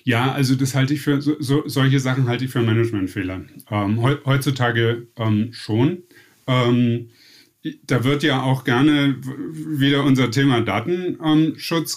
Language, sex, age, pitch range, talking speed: German, male, 30-49, 120-145 Hz, 140 wpm